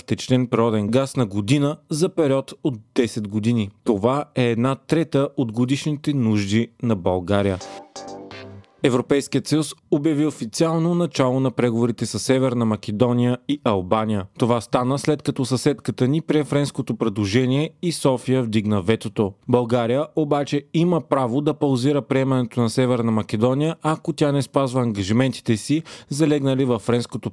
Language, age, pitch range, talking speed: Bulgarian, 30-49, 115-145 Hz, 140 wpm